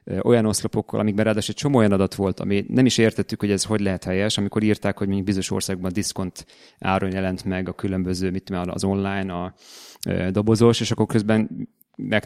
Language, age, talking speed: Hungarian, 30-49, 195 wpm